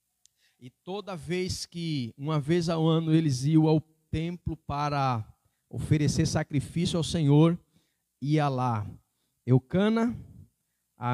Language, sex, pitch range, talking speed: Portuguese, male, 130-175 Hz, 115 wpm